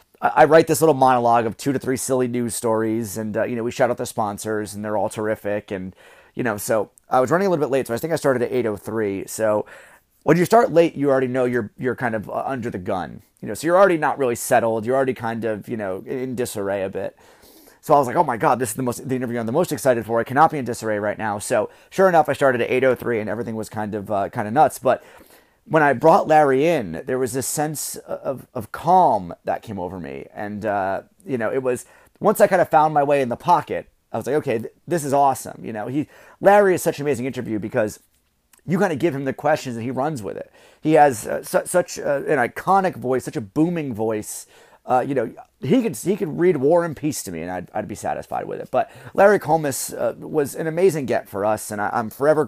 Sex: male